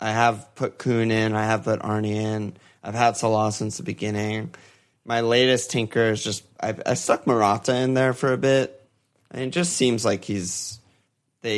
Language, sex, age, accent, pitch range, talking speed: English, male, 20-39, American, 105-125 Hz, 200 wpm